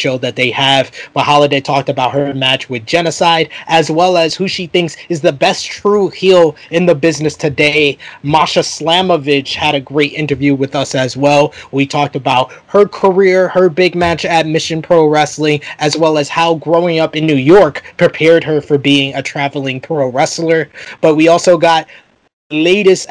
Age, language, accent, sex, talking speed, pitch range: 20-39, English, American, male, 185 wpm, 145-165 Hz